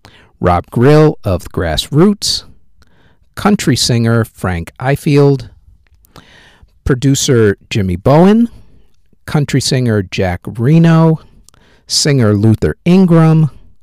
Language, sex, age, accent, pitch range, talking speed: English, male, 50-69, American, 100-160 Hz, 80 wpm